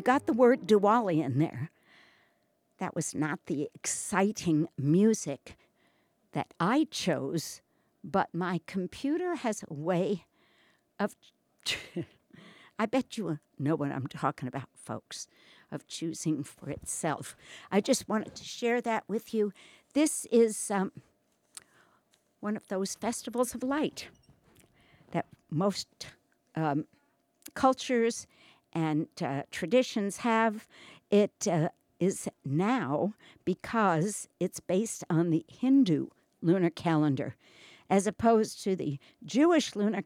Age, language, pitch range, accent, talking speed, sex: 60-79, English, 160-225 Hz, American, 115 wpm, female